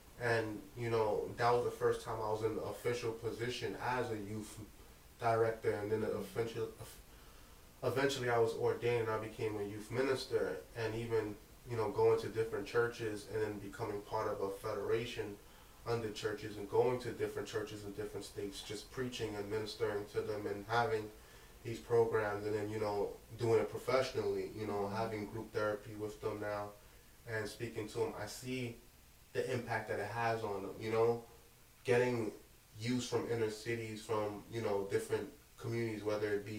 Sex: male